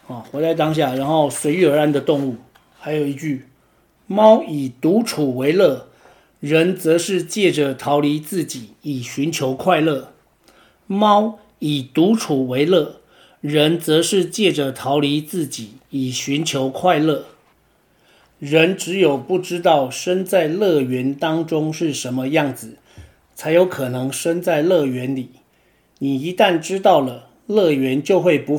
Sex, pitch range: male, 135-180 Hz